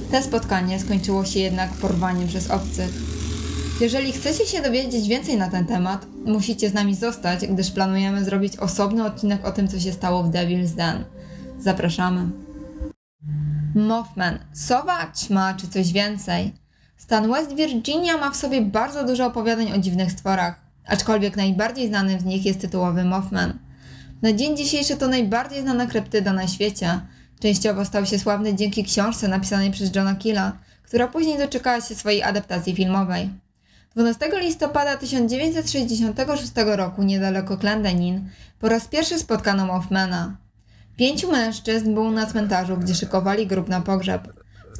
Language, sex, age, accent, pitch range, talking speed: Polish, female, 20-39, native, 185-230 Hz, 145 wpm